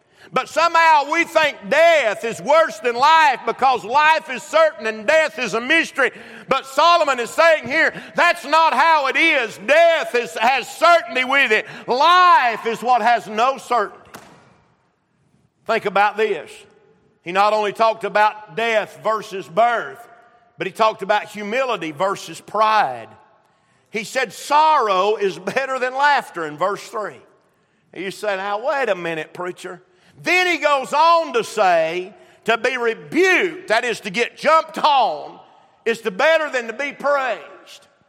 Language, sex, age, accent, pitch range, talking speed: English, male, 50-69, American, 225-315 Hz, 155 wpm